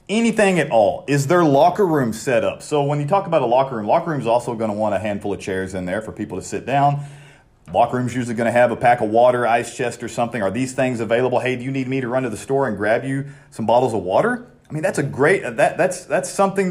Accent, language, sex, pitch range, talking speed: American, English, male, 110-145 Hz, 285 wpm